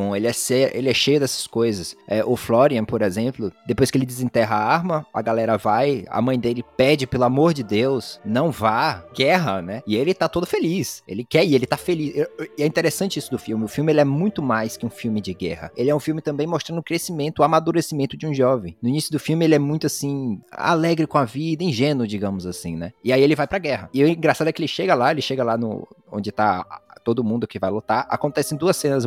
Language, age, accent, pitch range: Portuguese, 20-39, Brazilian, 115-150 Hz